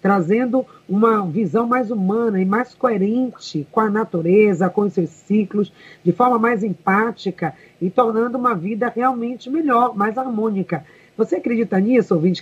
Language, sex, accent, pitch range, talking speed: Portuguese, female, Brazilian, 195-240 Hz, 150 wpm